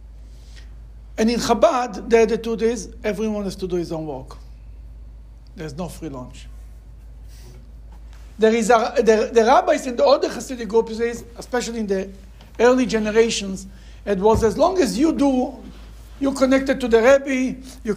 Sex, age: male, 60-79